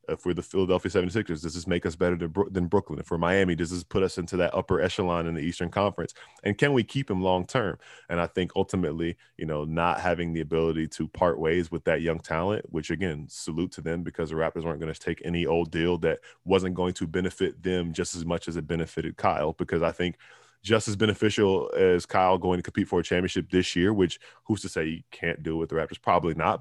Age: 20-39